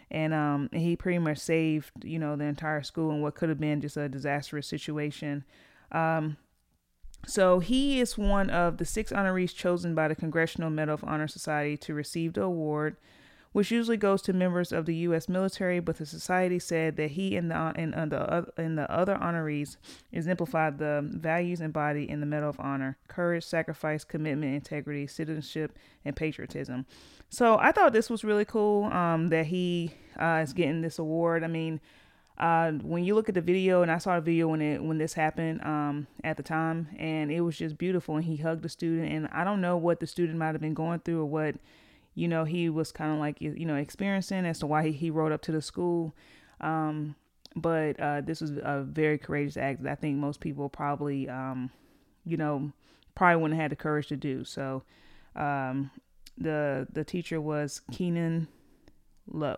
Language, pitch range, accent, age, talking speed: English, 150-170 Hz, American, 30-49, 195 wpm